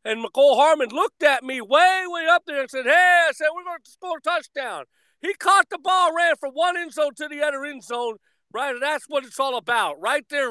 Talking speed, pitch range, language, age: 250 wpm, 235-305 Hz, English, 40-59